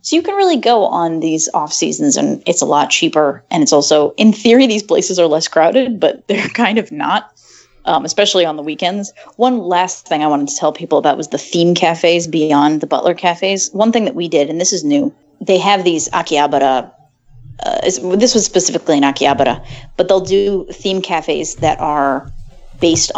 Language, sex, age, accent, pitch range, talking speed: English, female, 30-49, American, 155-200 Hz, 200 wpm